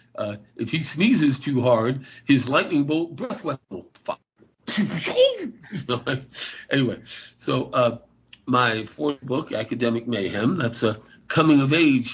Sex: male